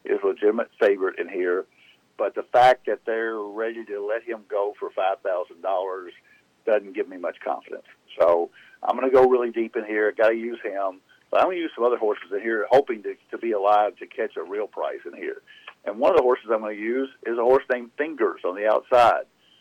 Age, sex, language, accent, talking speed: 50-69, male, English, American, 235 wpm